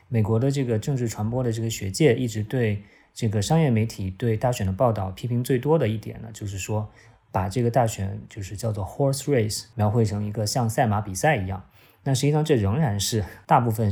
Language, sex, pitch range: Chinese, male, 105-130 Hz